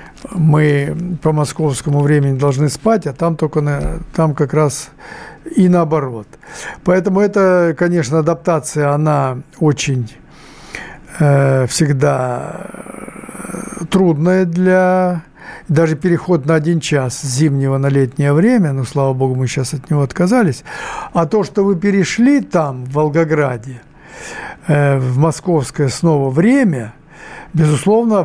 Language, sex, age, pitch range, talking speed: Russian, male, 60-79, 145-180 Hz, 125 wpm